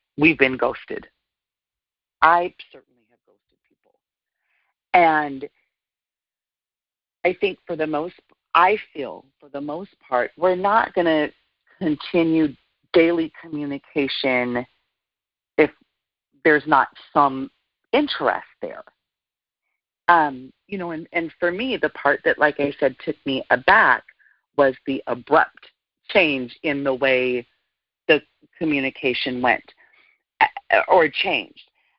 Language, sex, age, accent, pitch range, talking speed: English, female, 40-59, American, 140-185 Hz, 115 wpm